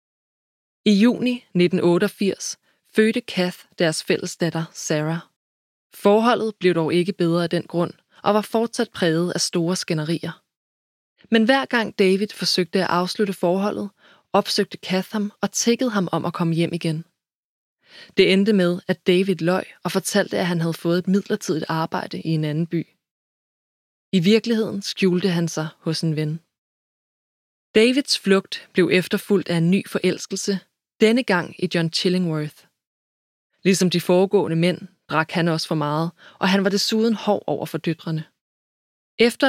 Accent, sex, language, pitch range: native, female, Danish, 170-205 Hz